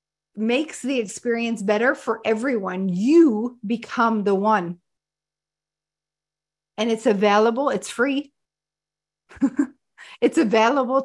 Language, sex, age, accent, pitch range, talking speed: English, female, 40-59, American, 205-245 Hz, 90 wpm